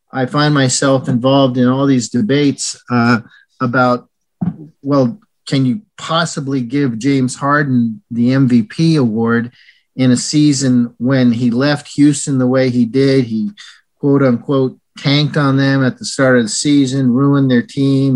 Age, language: 40-59, English